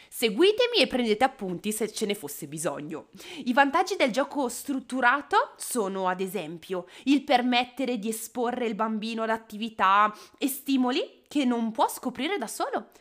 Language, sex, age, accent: Italian, female, 20-39, native